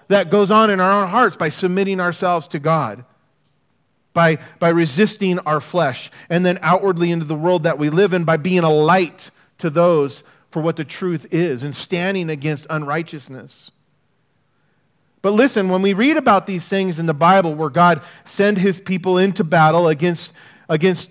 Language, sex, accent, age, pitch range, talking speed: English, male, American, 40-59, 160-200 Hz, 175 wpm